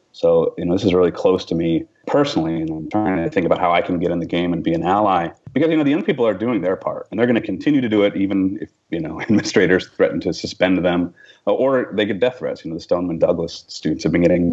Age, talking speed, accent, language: 30-49, 280 wpm, American, English